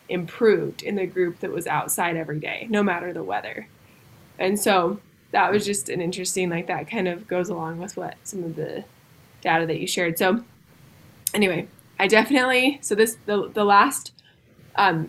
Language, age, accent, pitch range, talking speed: English, 20-39, American, 175-205 Hz, 180 wpm